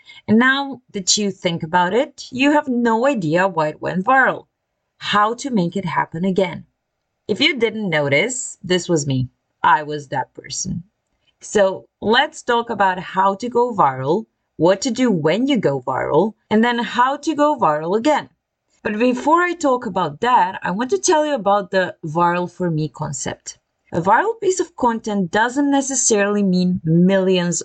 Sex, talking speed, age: female, 175 wpm, 30-49